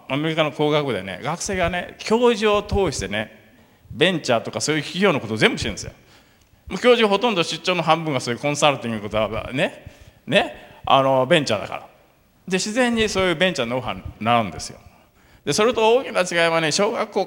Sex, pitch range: male, 135-200 Hz